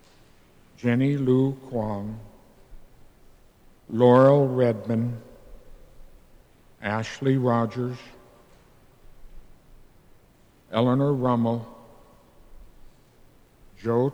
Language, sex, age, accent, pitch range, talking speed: English, male, 60-79, American, 110-125 Hz, 40 wpm